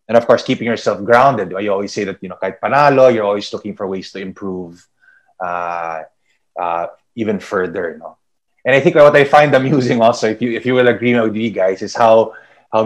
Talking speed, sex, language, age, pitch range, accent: 210 wpm, male, English, 20-39, 110-130 Hz, Filipino